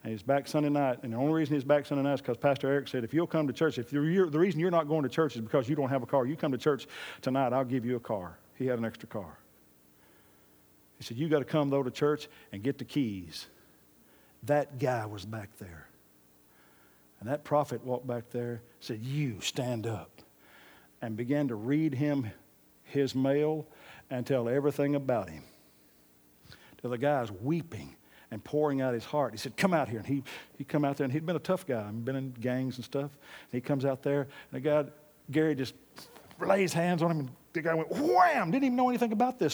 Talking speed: 230 wpm